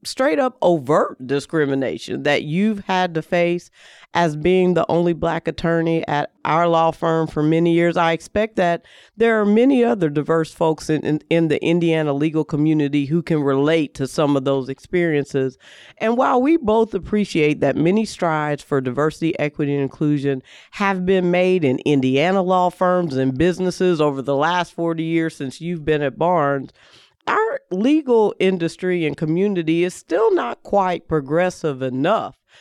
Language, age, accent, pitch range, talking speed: English, 40-59, American, 150-190 Hz, 160 wpm